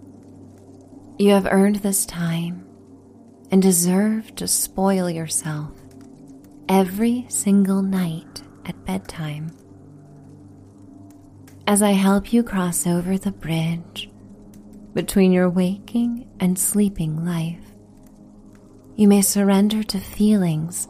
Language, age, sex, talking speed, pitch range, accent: English, 30-49, female, 100 wpm, 135-200 Hz, American